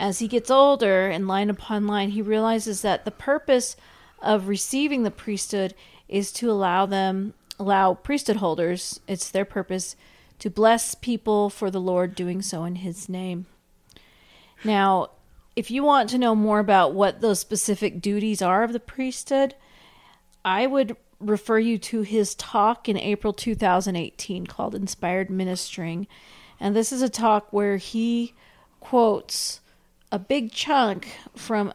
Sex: female